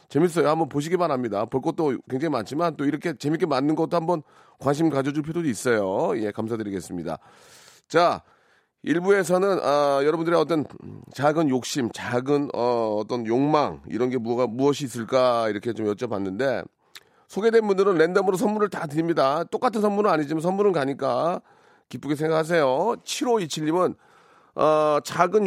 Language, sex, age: Korean, male, 40-59